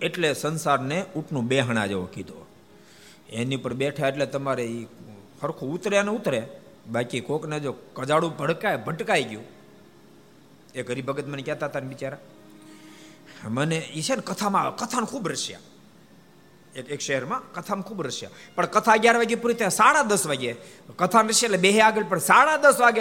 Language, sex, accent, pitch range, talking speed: Gujarati, male, native, 120-195 Hz, 130 wpm